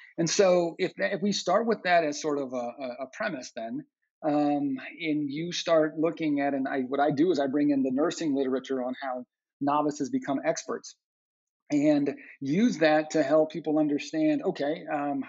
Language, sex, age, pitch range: English, male, 40-59, 135-175 Hz